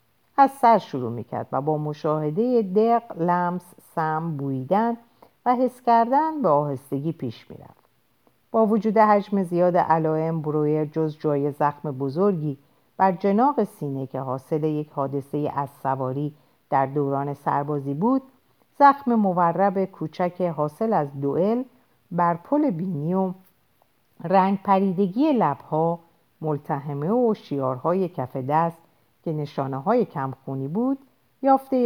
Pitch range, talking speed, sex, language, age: 140-220 Hz, 120 wpm, female, Persian, 50-69